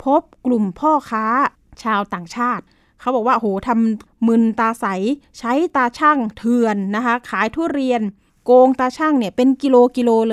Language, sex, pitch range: Thai, female, 220-275 Hz